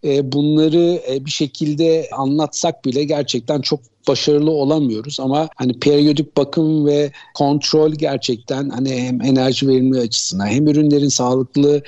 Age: 50-69